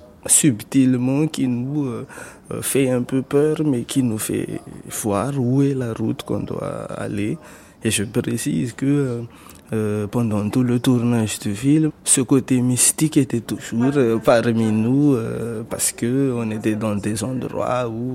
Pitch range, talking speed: 110-130 Hz, 160 wpm